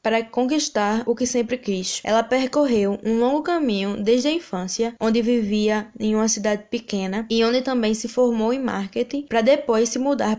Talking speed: 180 wpm